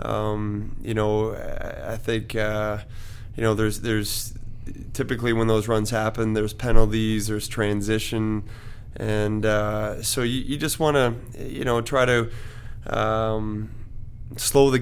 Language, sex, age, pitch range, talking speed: English, male, 20-39, 105-115 Hz, 140 wpm